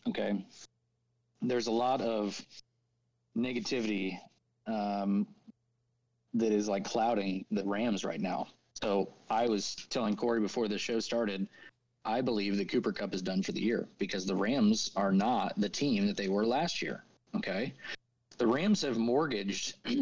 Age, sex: 30-49, male